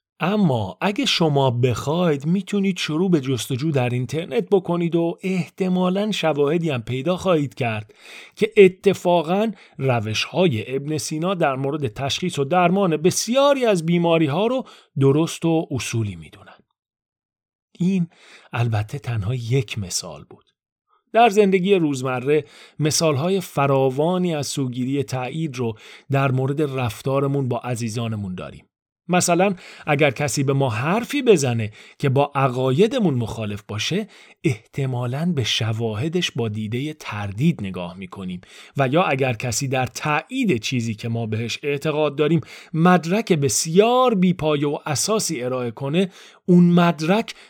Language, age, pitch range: Persian, 40-59, 125-180 Hz